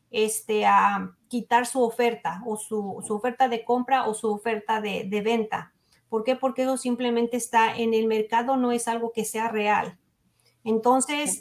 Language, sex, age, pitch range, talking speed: Spanish, female, 40-59, 220-255 Hz, 175 wpm